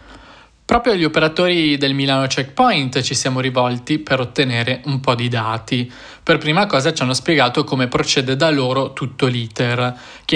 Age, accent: 20-39, native